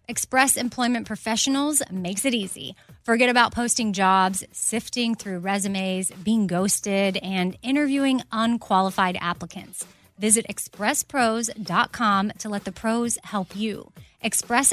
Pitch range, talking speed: 190-235 Hz, 115 wpm